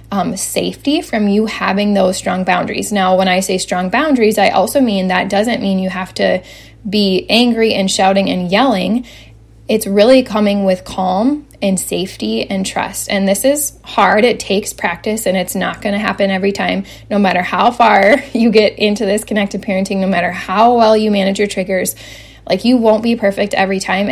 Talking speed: 195 wpm